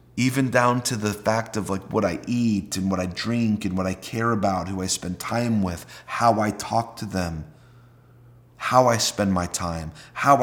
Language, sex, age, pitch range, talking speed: English, male, 30-49, 110-130 Hz, 200 wpm